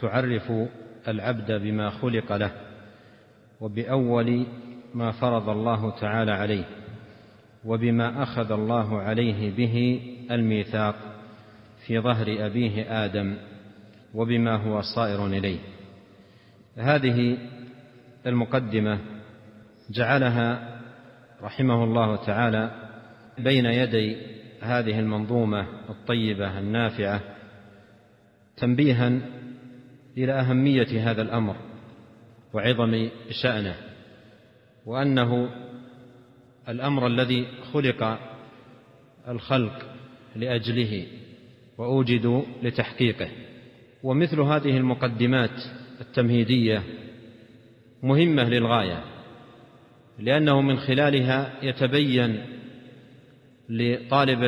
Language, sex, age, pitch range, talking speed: Arabic, male, 50-69, 110-125 Hz, 70 wpm